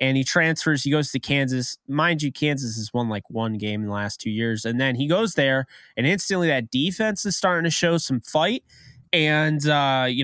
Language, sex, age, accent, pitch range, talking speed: English, male, 20-39, American, 120-155 Hz, 225 wpm